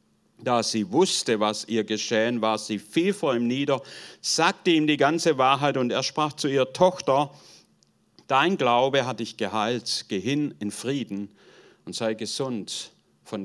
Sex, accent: male, German